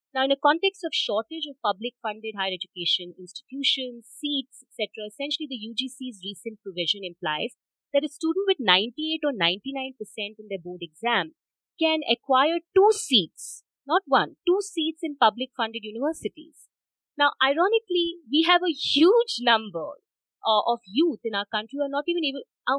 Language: English